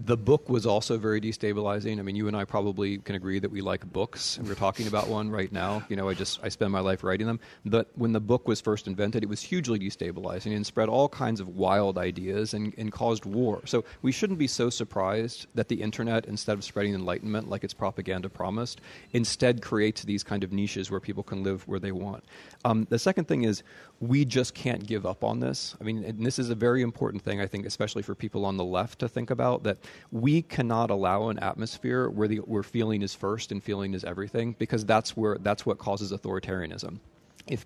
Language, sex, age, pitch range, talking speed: English, male, 30-49, 100-120 Hz, 230 wpm